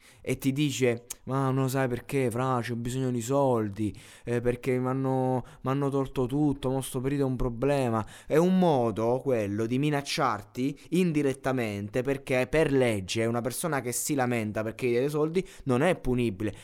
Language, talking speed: Italian, 175 wpm